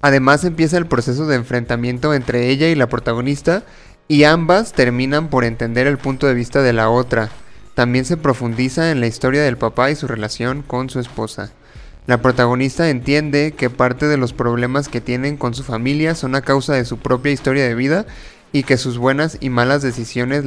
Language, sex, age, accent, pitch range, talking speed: Spanish, male, 30-49, Mexican, 120-140 Hz, 195 wpm